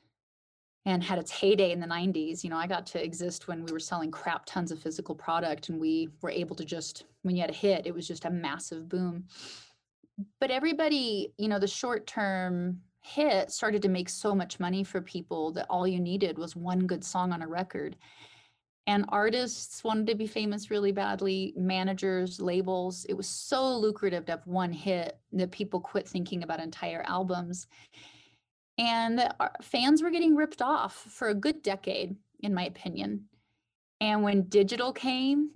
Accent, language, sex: American, English, female